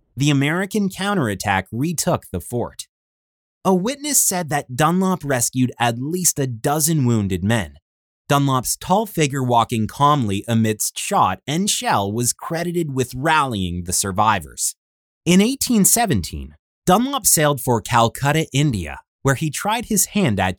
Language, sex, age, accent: English, male, 30-49, American